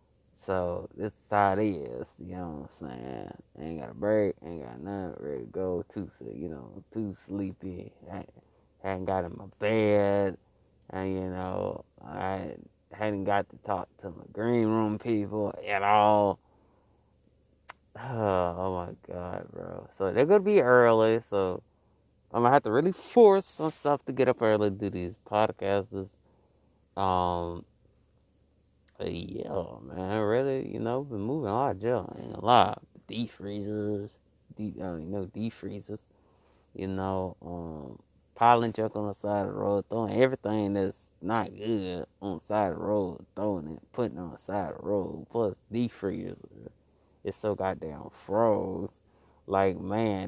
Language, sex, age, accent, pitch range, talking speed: English, male, 20-39, American, 95-110 Hz, 165 wpm